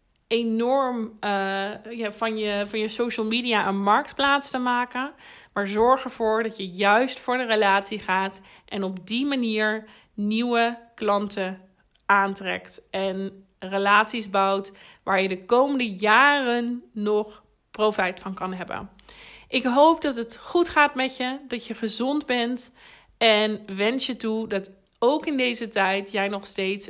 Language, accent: Dutch, Dutch